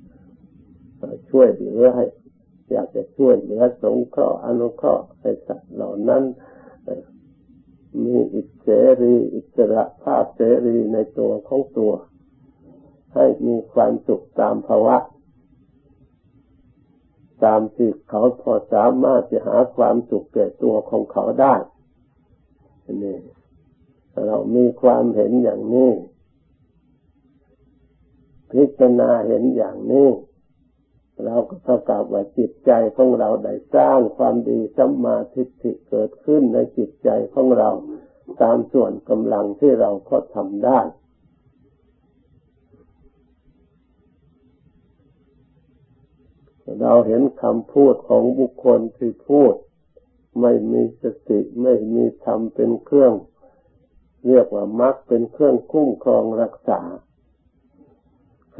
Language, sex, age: Thai, male, 50-69